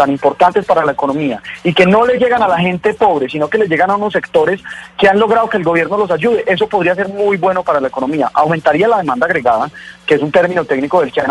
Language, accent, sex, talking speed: Spanish, Colombian, male, 260 wpm